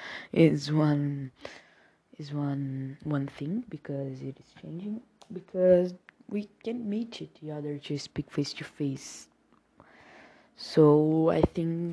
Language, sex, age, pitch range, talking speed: Portuguese, female, 20-39, 145-185 Hz, 120 wpm